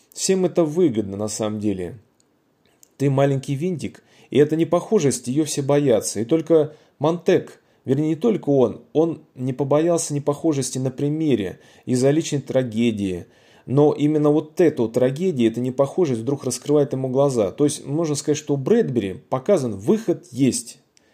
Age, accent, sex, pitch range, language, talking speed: 30-49, native, male, 115-155 Hz, Russian, 150 wpm